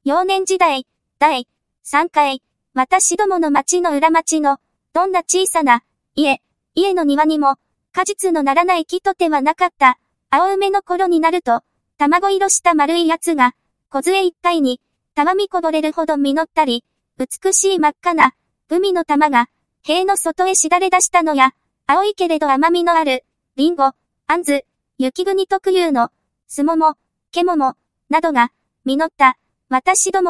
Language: English